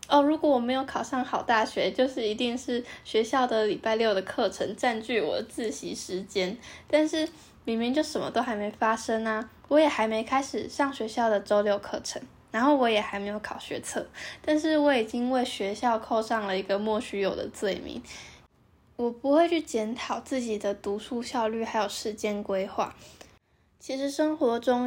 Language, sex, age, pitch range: Chinese, female, 10-29, 215-265 Hz